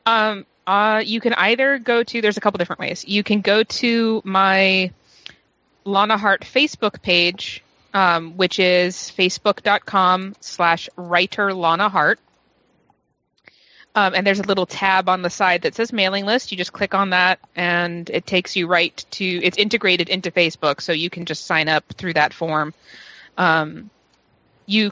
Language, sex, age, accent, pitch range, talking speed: English, female, 20-39, American, 175-205 Hz, 155 wpm